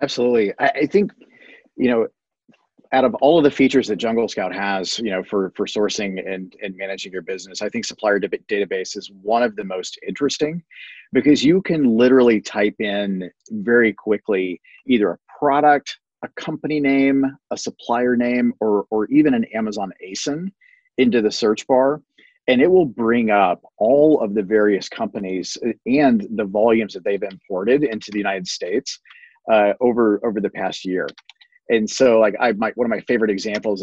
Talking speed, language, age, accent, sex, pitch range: 175 wpm, English, 30-49, American, male, 100-140 Hz